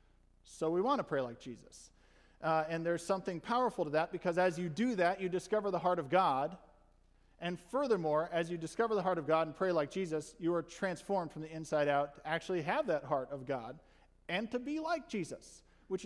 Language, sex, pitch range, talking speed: English, male, 150-190 Hz, 215 wpm